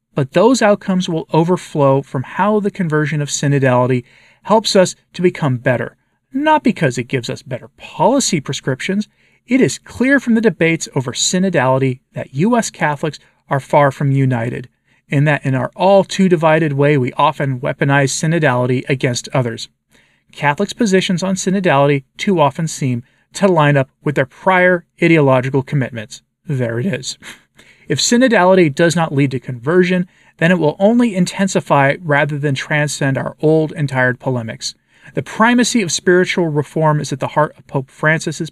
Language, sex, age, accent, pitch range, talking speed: English, male, 40-59, American, 135-185 Hz, 155 wpm